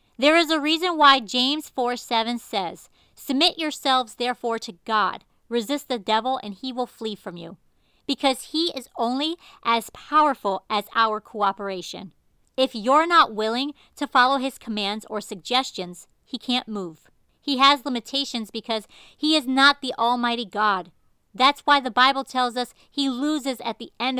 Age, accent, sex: 40-59, American, female